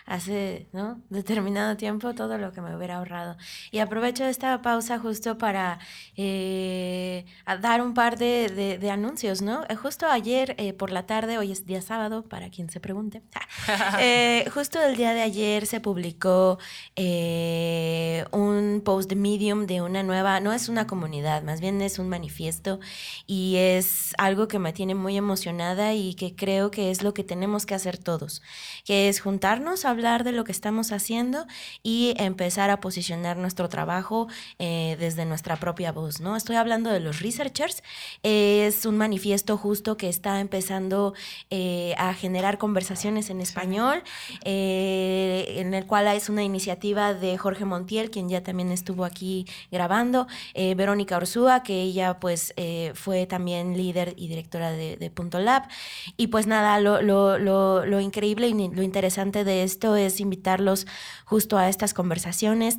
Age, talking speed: 20-39, 170 wpm